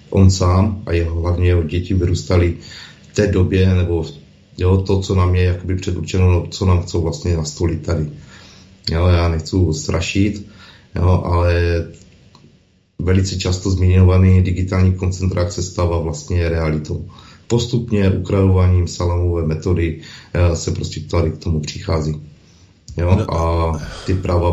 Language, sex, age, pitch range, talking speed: Czech, male, 30-49, 85-95 Hz, 125 wpm